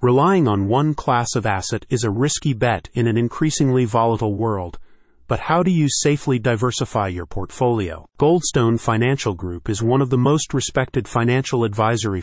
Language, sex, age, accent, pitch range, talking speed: English, male, 40-59, American, 110-135 Hz, 165 wpm